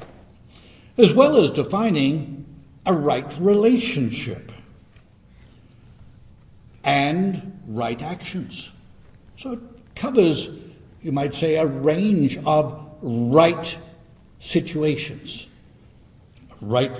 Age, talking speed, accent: 60-79, 80 wpm, American